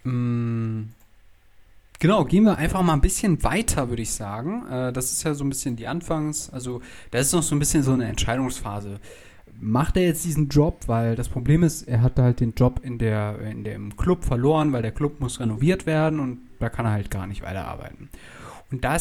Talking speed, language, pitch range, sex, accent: 205 wpm, German, 110-145 Hz, male, German